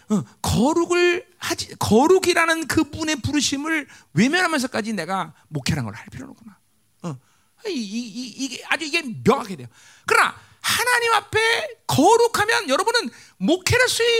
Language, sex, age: Korean, male, 40-59